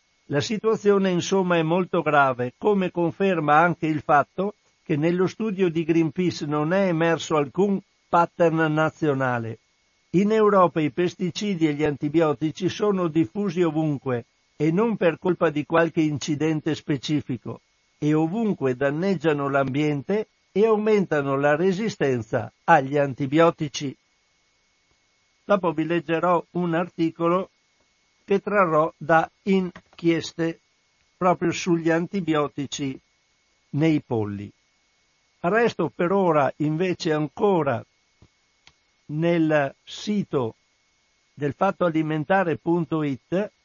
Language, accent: Italian, native